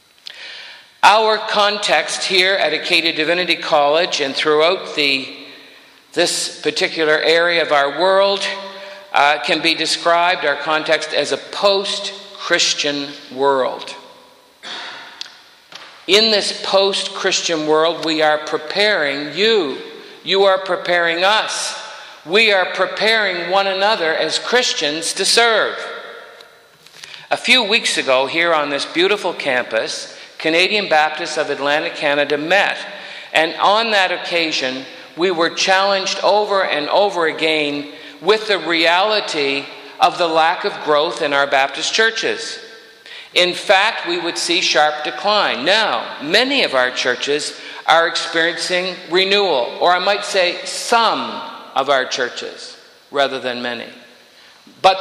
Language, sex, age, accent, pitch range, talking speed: English, male, 50-69, American, 150-200 Hz, 120 wpm